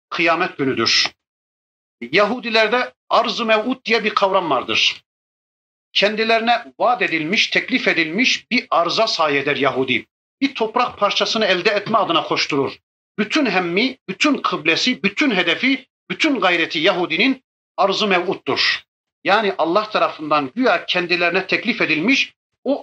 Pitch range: 165-235 Hz